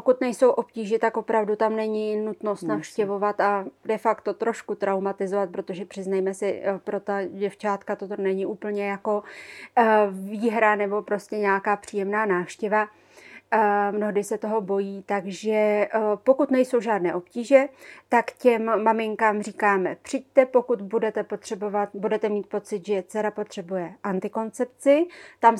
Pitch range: 205-225 Hz